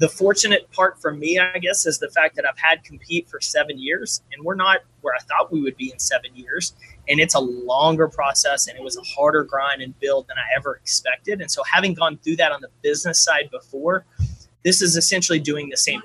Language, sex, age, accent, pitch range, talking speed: English, male, 30-49, American, 140-180 Hz, 235 wpm